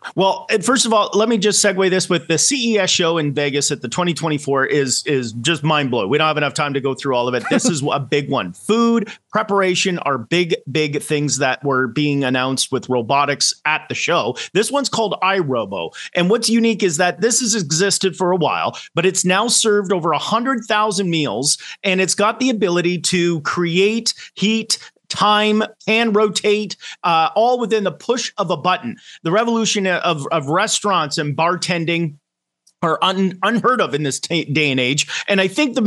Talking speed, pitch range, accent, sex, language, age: 190 wpm, 155-215 Hz, American, male, English, 30-49